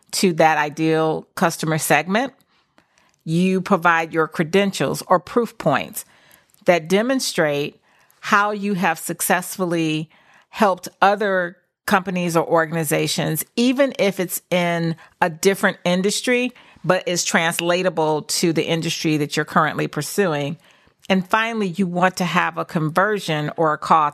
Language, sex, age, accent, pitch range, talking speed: English, female, 40-59, American, 165-210 Hz, 125 wpm